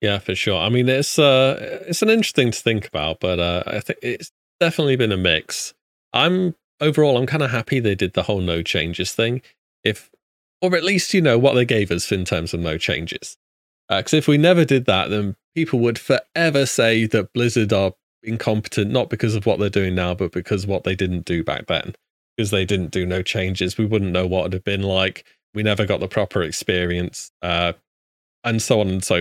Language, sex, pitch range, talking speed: English, male, 90-120 Hz, 225 wpm